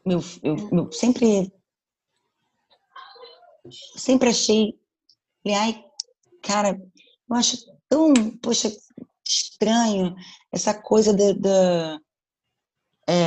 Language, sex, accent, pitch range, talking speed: Portuguese, female, Brazilian, 180-225 Hz, 85 wpm